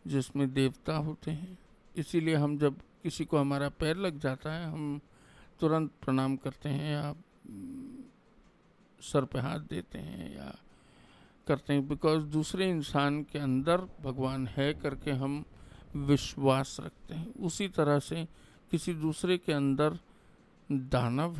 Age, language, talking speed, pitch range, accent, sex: 50-69, English, 135 wpm, 135-160 Hz, Indian, male